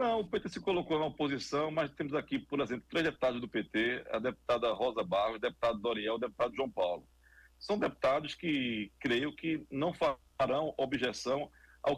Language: Portuguese